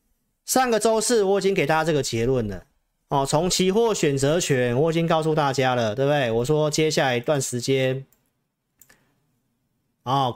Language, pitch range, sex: Chinese, 130-175 Hz, male